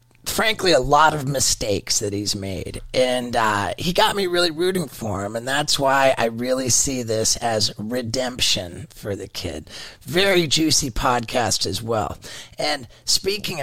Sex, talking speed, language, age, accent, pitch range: male, 160 wpm, English, 40-59, American, 120-155 Hz